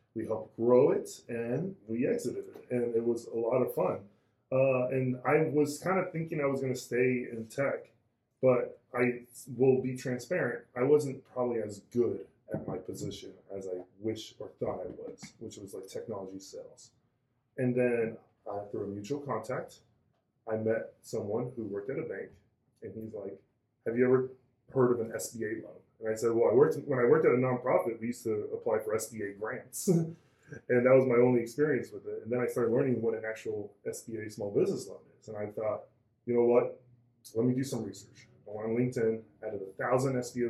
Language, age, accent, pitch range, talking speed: English, 20-39, American, 110-130 Hz, 205 wpm